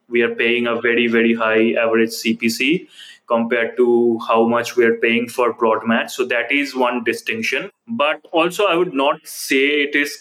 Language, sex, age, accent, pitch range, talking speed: English, male, 20-39, Indian, 120-135 Hz, 190 wpm